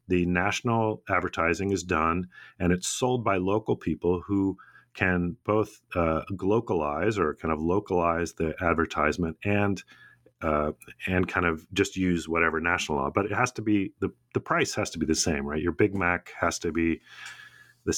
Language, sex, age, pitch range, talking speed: English, male, 40-59, 80-100 Hz, 175 wpm